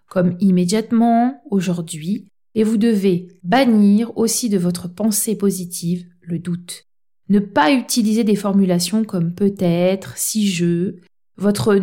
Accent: French